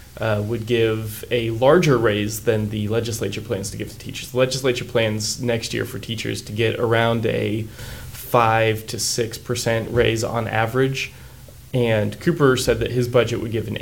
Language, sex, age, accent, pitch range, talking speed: English, male, 20-39, American, 110-125 Hz, 180 wpm